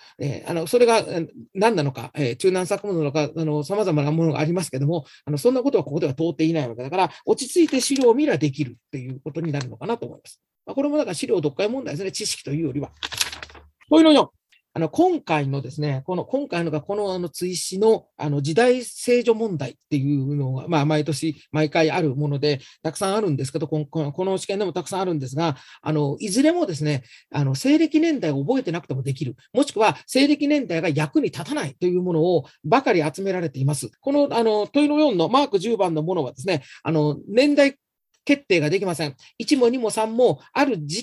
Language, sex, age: Japanese, male, 40-59